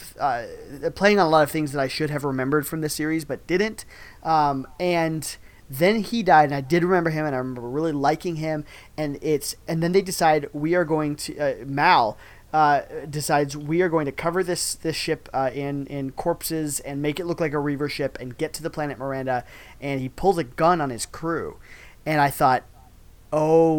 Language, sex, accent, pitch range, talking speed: English, male, American, 130-160 Hz, 215 wpm